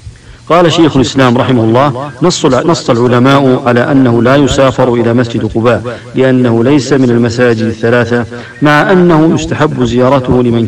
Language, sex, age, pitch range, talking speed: English, male, 50-69, 120-140 Hz, 135 wpm